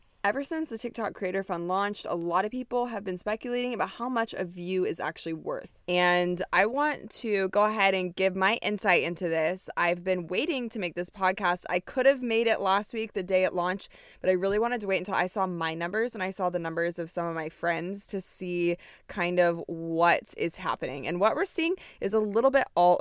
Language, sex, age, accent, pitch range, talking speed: English, female, 20-39, American, 175-215 Hz, 230 wpm